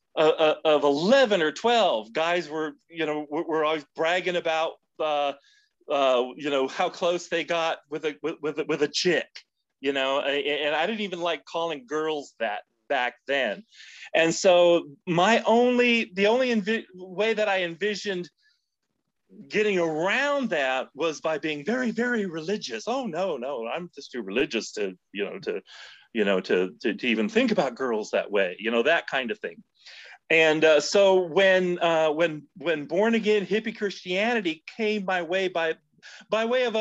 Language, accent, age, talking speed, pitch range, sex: English, American, 40-59, 180 wpm, 145-210 Hz, male